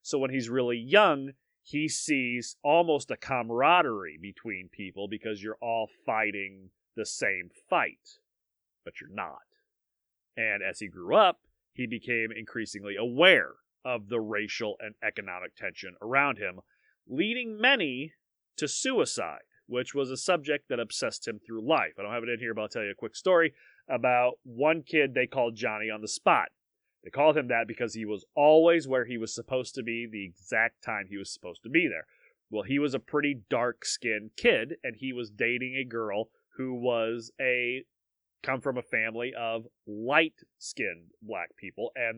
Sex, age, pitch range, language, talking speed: male, 30-49, 110-135 Hz, English, 175 wpm